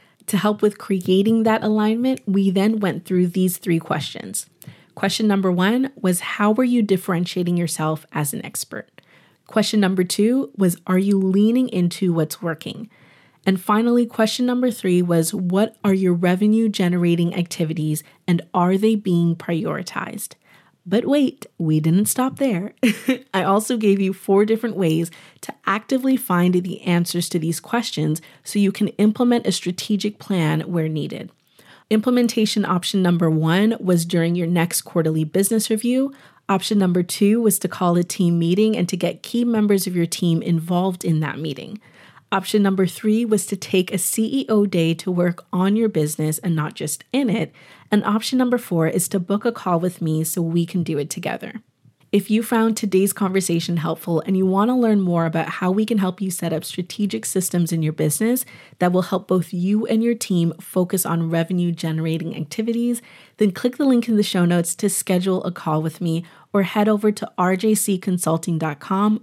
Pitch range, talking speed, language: 170-215 Hz, 180 wpm, English